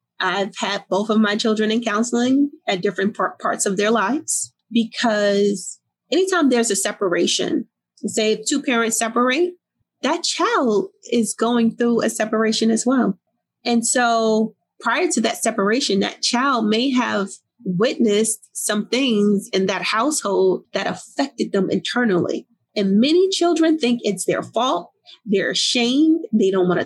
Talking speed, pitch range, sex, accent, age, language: 145 wpm, 205-255 Hz, female, American, 30-49, English